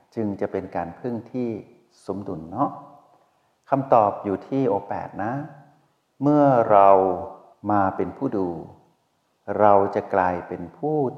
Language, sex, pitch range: Thai, male, 95-120 Hz